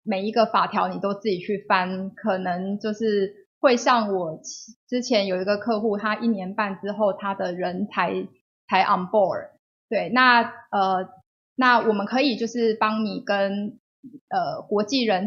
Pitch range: 195-235 Hz